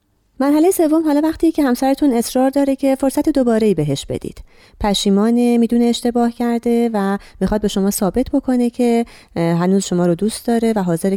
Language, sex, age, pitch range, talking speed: Persian, female, 30-49, 160-235 Hz, 165 wpm